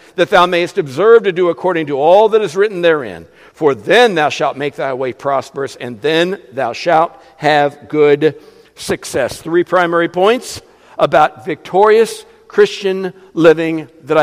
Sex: male